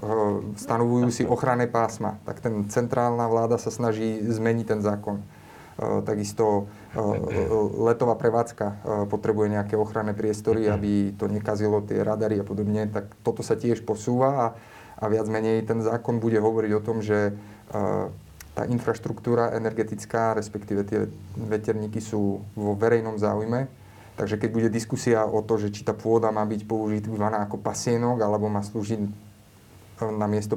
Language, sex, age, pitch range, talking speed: Slovak, male, 30-49, 105-120 Hz, 140 wpm